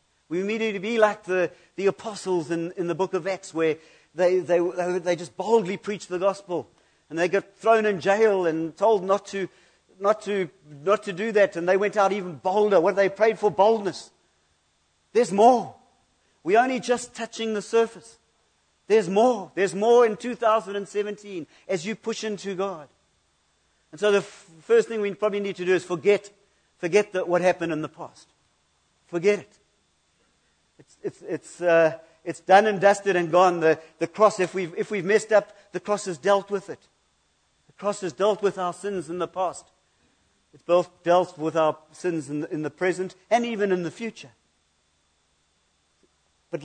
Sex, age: male, 50-69